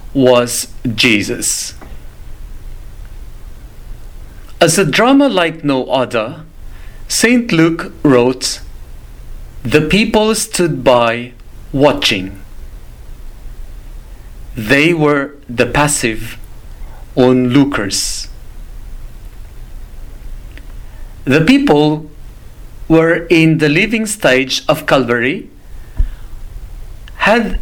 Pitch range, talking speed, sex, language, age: 120-160 Hz, 65 wpm, male, English, 50-69